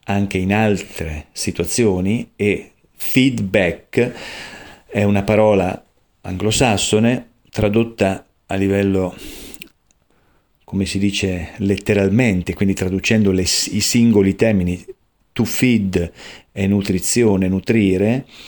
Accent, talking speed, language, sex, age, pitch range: native, 90 wpm, Italian, male, 40-59, 95-110 Hz